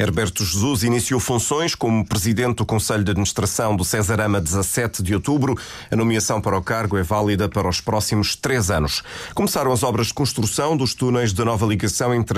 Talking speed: 190 wpm